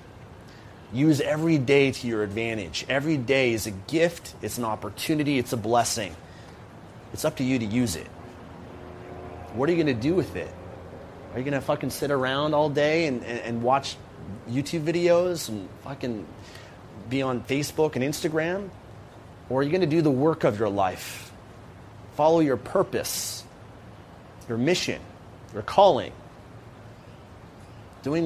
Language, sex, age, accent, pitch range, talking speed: English, male, 30-49, American, 100-130 Hz, 155 wpm